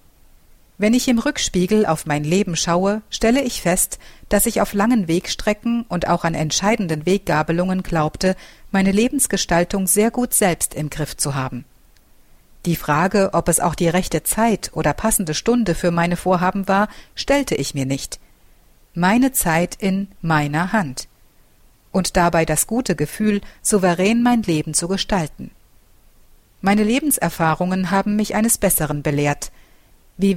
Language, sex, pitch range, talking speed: German, female, 160-210 Hz, 145 wpm